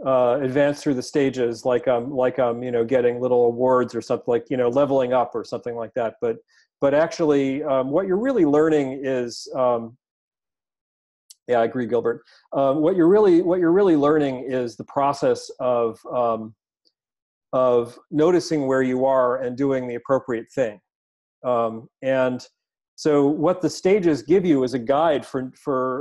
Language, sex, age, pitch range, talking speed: English, male, 40-59, 125-155 Hz, 175 wpm